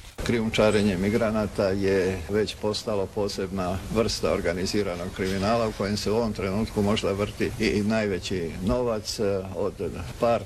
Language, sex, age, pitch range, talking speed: Croatian, male, 50-69, 95-115 Hz, 125 wpm